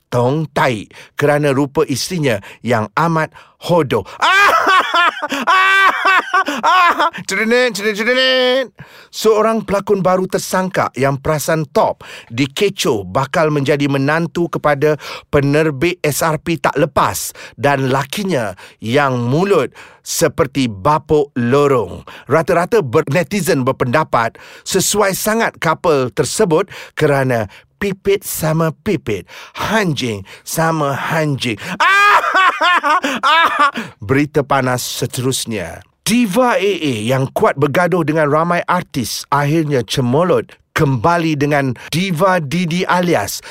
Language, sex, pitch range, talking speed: Malay, male, 140-195 Hz, 90 wpm